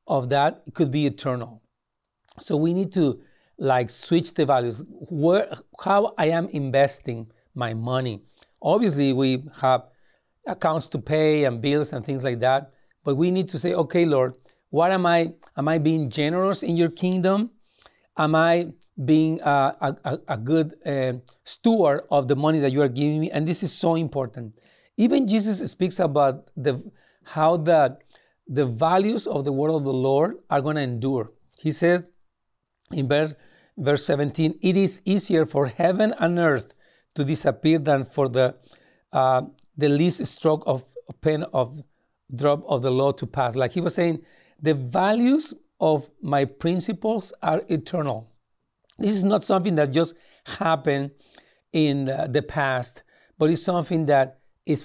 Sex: male